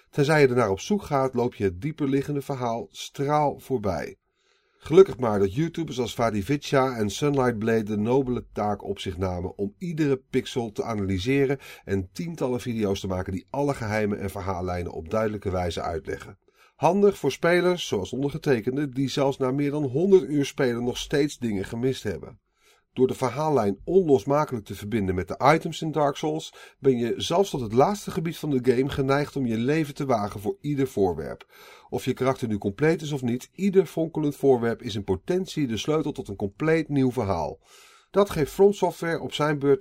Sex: male